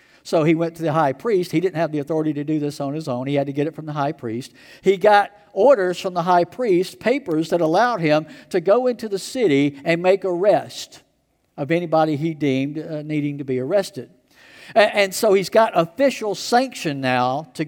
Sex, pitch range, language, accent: male, 135-185 Hz, English, American